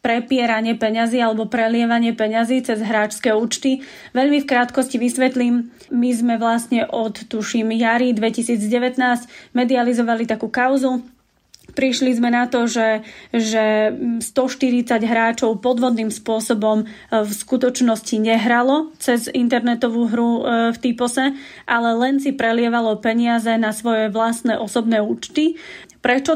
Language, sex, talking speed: Slovak, female, 115 wpm